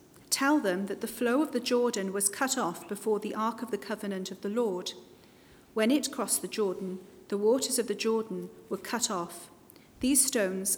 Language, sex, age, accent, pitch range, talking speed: English, female, 40-59, British, 190-245 Hz, 195 wpm